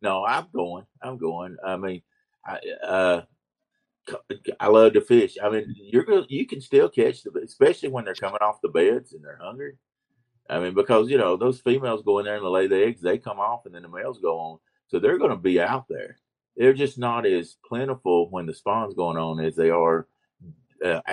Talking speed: 220 wpm